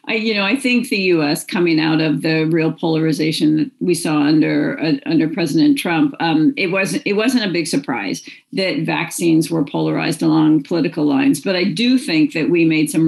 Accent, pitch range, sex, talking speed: American, 175-275 Hz, female, 200 wpm